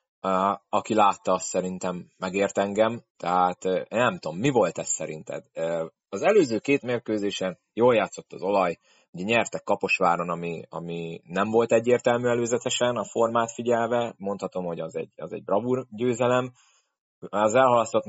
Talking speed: 145 wpm